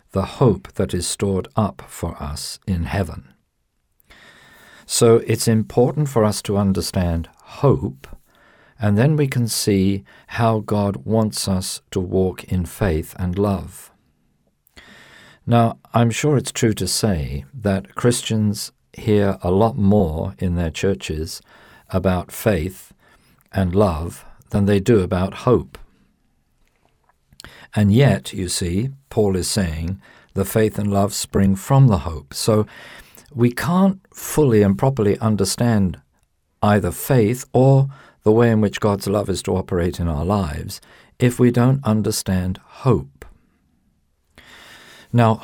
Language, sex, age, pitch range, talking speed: English, male, 50-69, 90-115 Hz, 135 wpm